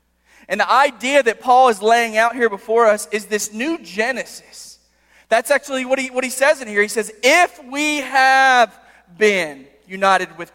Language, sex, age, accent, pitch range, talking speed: English, male, 20-39, American, 175-240 Hz, 180 wpm